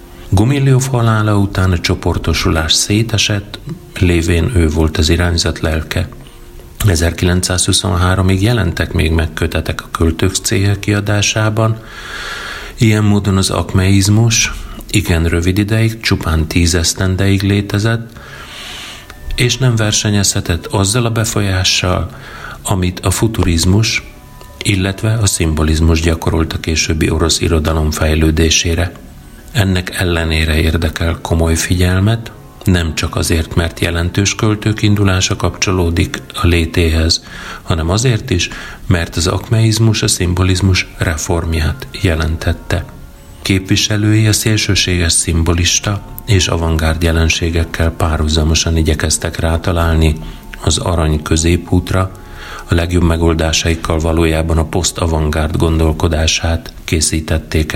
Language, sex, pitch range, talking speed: Hungarian, male, 80-100 Hz, 95 wpm